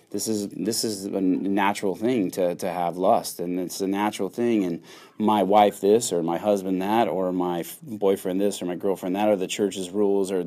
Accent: American